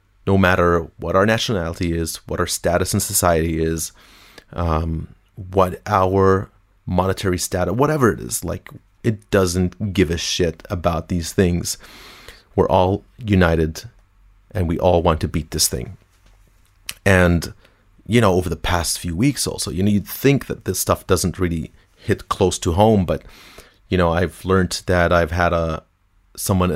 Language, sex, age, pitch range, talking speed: English, male, 30-49, 85-100 Hz, 160 wpm